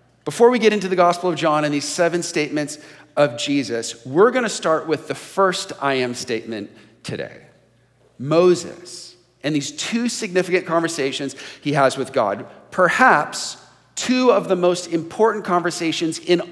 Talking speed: 155 wpm